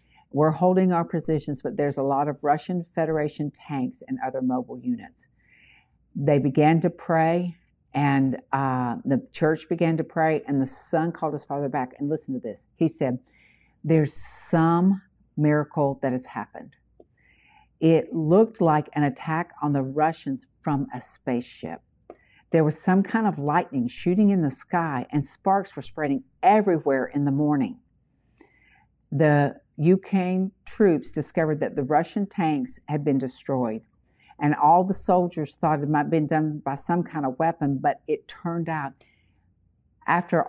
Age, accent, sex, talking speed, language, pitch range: 60-79, American, female, 155 wpm, English, 140-175 Hz